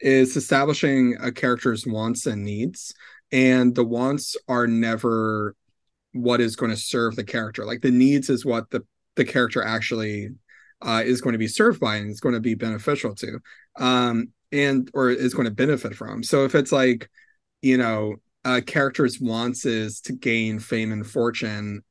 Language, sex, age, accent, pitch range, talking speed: English, male, 30-49, American, 115-130 Hz, 180 wpm